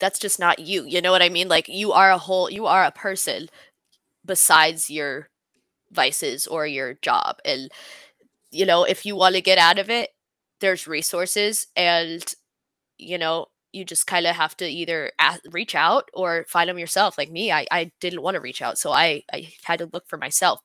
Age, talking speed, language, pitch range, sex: 20-39, 205 wpm, English, 165-190 Hz, female